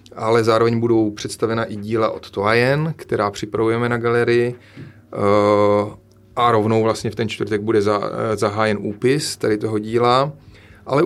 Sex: male